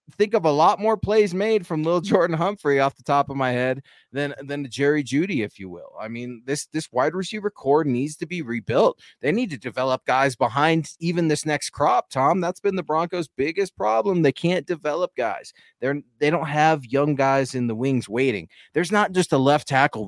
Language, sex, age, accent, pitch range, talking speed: English, male, 20-39, American, 125-175 Hz, 215 wpm